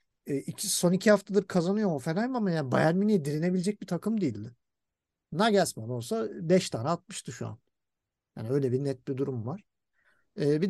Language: Turkish